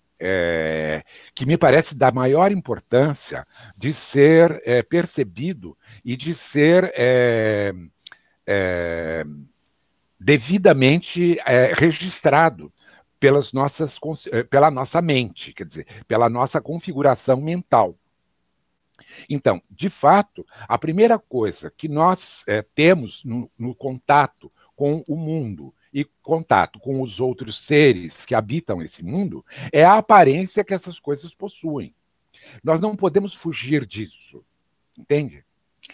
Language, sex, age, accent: Portuguese, male, 60-79, Brazilian